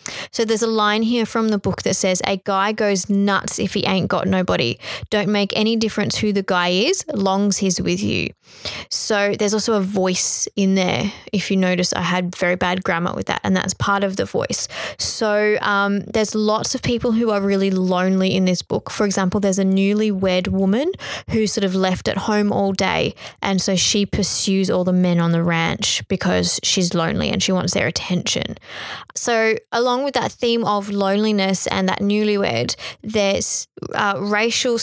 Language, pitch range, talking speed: English, 190-215 Hz, 195 wpm